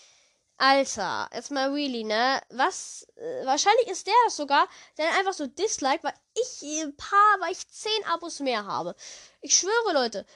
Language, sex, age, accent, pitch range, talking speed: German, female, 10-29, German, 235-315 Hz, 155 wpm